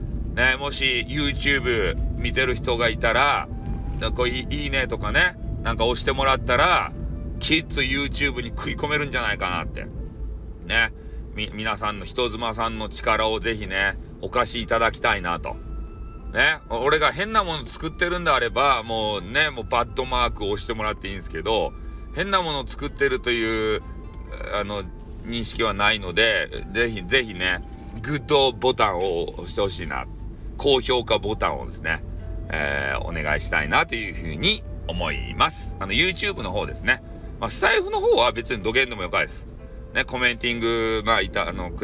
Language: Japanese